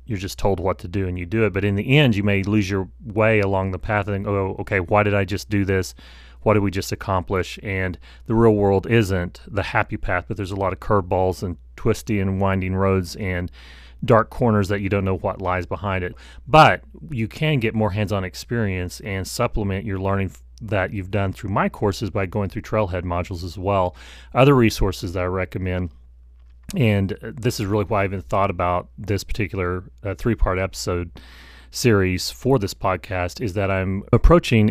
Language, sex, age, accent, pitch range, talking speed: English, male, 30-49, American, 95-105 Hz, 200 wpm